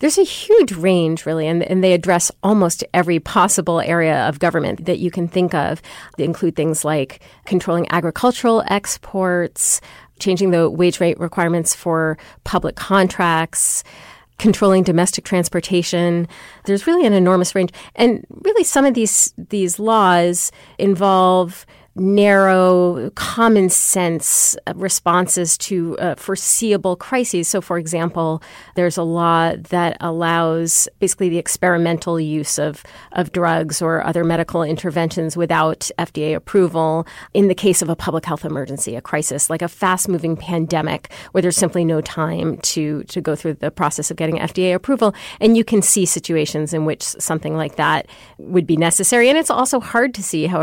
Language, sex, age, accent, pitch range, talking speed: English, female, 40-59, American, 165-190 Hz, 155 wpm